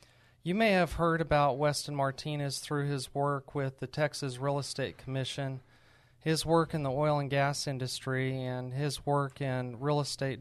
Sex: male